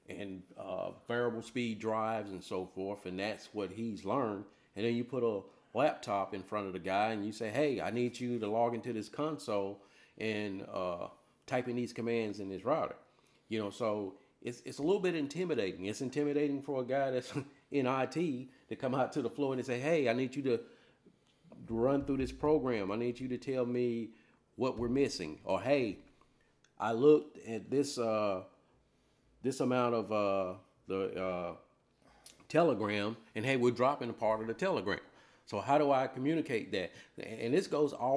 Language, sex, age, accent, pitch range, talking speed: English, male, 50-69, American, 105-135 Hz, 190 wpm